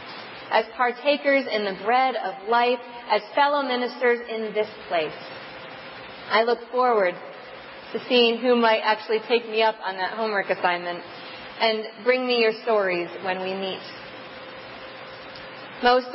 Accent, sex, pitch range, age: American, female, 200-245 Hz, 30-49